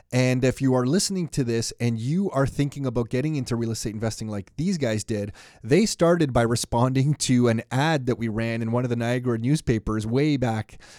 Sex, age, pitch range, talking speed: male, 30-49, 115-145 Hz, 215 wpm